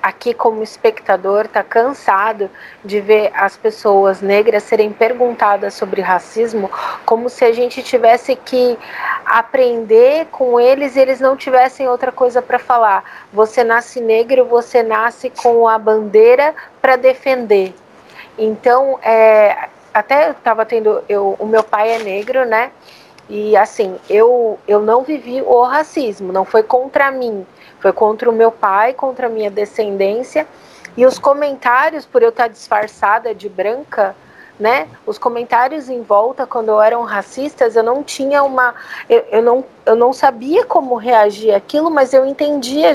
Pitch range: 220-265 Hz